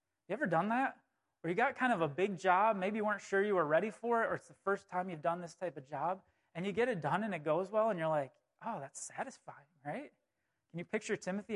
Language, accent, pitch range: English, American, 145-200 Hz